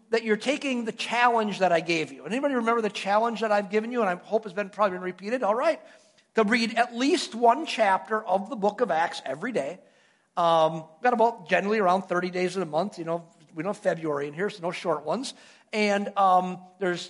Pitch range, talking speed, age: 200-245 Hz, 225 wpm, 50-69